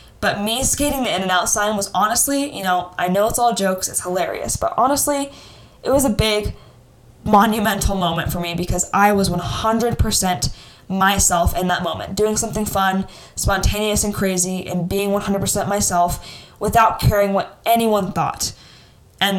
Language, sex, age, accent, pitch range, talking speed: English, female, 10-29, American, 180-210 Hz, 160 wpm